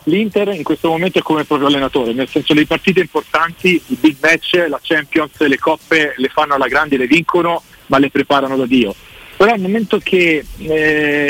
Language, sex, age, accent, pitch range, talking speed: Italian, male, 40-59, native, 135-170 Hz, 195 wpm